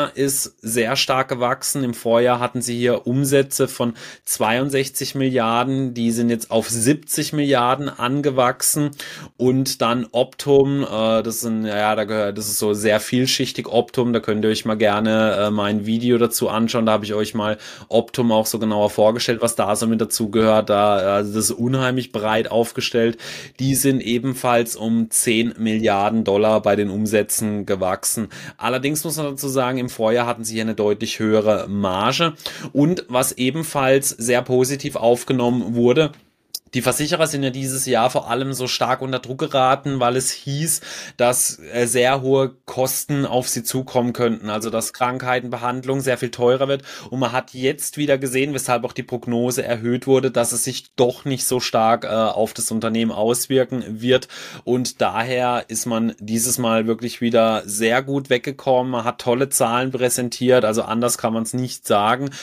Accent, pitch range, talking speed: German, 115-130 Hz, 175 wpm